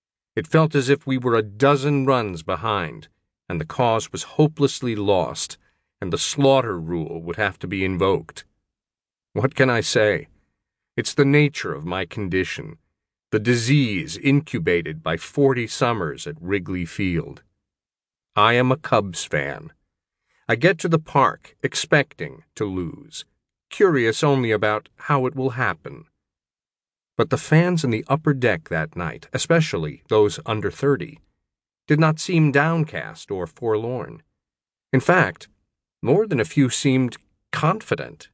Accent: American